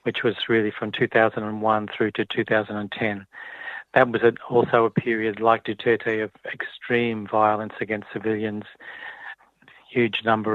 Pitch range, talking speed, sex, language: 110-120 Hz, 165 wpm, male, English